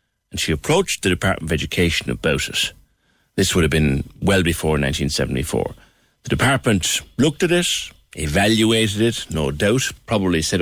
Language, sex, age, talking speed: English, male, 60-79, 155 wpm